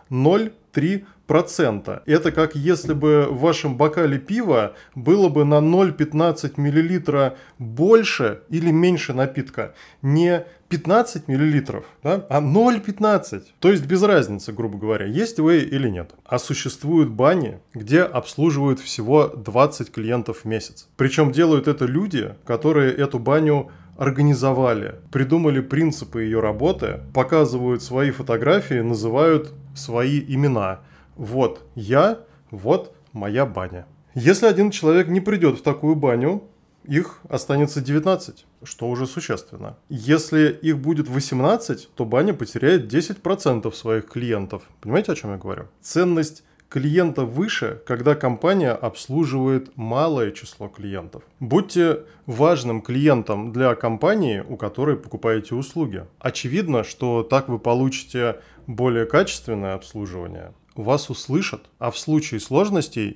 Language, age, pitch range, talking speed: Russian, 20-39, 120-160 Hz, 120 wpm